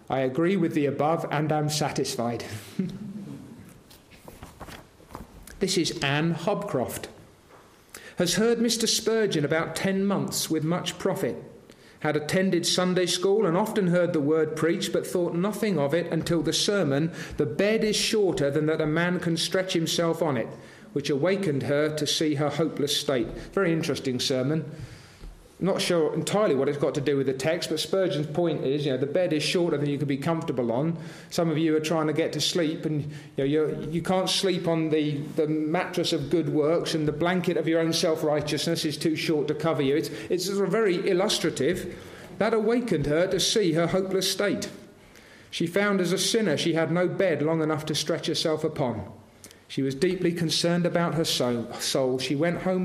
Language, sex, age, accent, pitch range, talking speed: English, male, 40-59, British, 150-185 Hz, 185 wpm